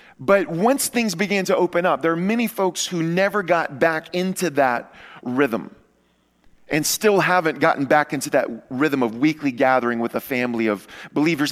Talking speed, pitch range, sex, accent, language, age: 175 wpm, 135-190 Hz, male, American, English, 40-59